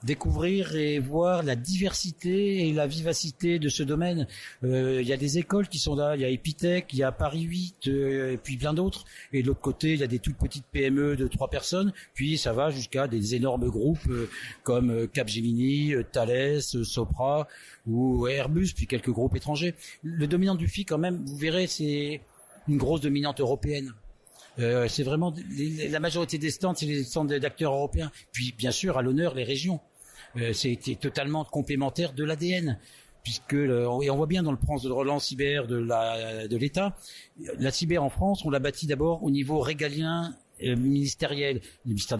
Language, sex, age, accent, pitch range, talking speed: French, male, 50-69, French, 125-155 Hz, 185 wpm